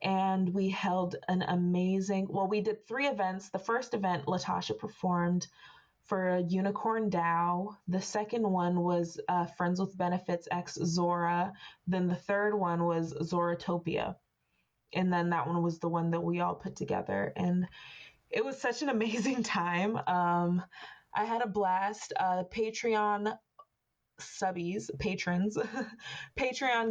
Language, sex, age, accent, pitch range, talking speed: English, female, 20-39, American, 175-200 Hz, 140 wpm